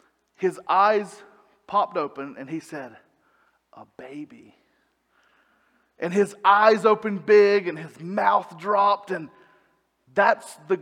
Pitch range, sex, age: 185-225 Hz, male, 30-49